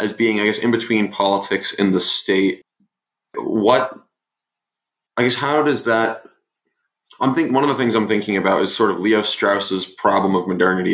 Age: 20-39